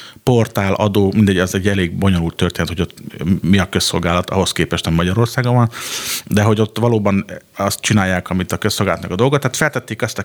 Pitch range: 90-115 Hz